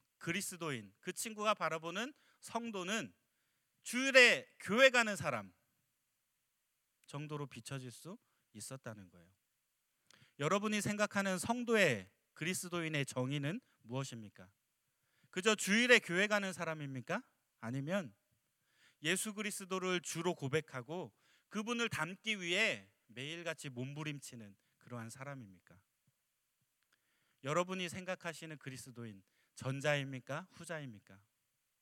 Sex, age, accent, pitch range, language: male, 40-59, native, 125-195 Hz, Korean